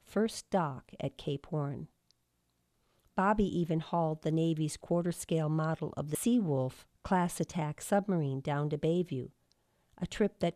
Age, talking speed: 50-69, 140 wpm